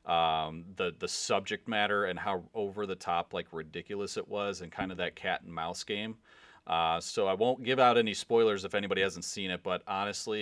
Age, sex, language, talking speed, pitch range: 30-49, male, English, 215 wpm, 90-110 Hz